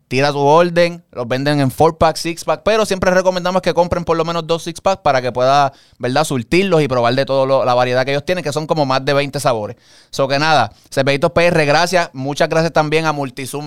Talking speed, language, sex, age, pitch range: 220 wpm, Spanish, male, 20-39, 130-165 Hz